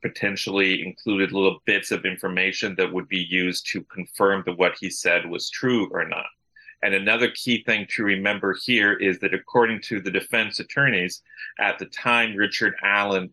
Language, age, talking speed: English, 40-59, 175 wpm